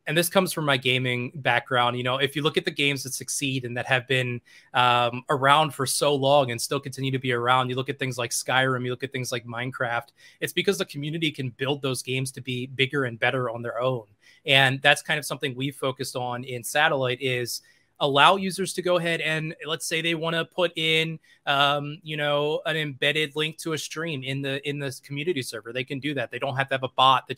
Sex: male